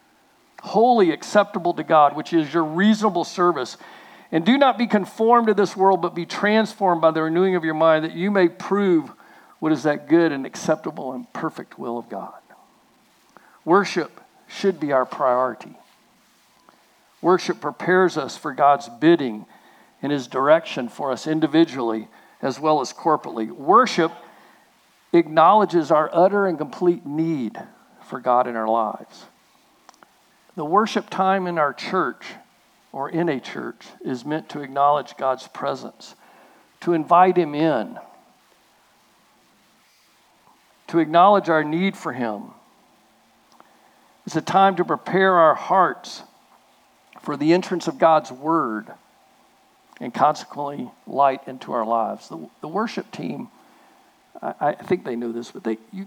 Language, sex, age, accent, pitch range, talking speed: English, male, 50-69, American, 140-185 Hz, 140 wpm